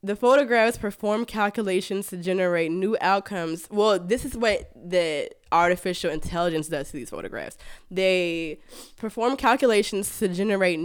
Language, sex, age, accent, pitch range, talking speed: English, female, 20-39, American, 175-240 Hz, 135 wpm